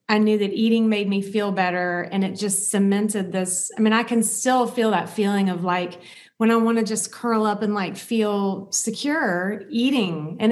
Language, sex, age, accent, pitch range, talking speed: English, female, 30-49, American, 185-220 Hz, 205 wpm